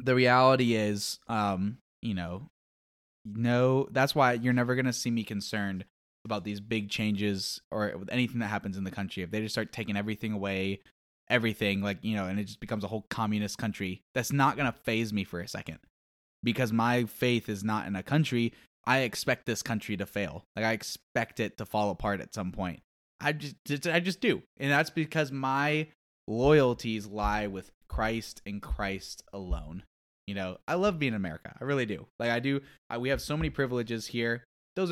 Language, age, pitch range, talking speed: English, 10-29, 100-125 Hz, 200 wpm